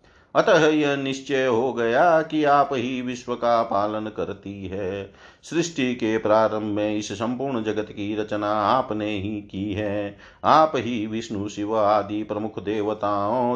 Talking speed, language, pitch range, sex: 145 wpm, Hindi, 105-130 Hz, male